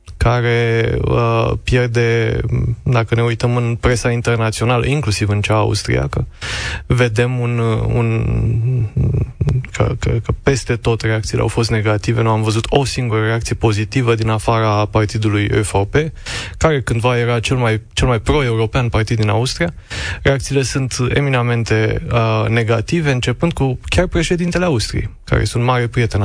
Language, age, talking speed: Romanian, 20-39, 140 wpm